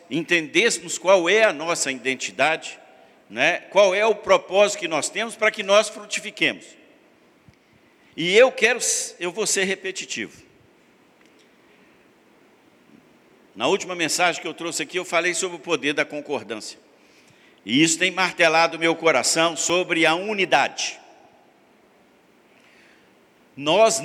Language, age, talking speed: Portuguese, 60-79, 125 wpm